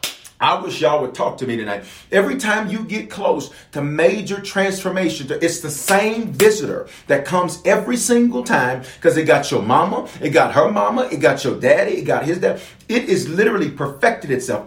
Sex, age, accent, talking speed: male, 40-59, American, 190 wpm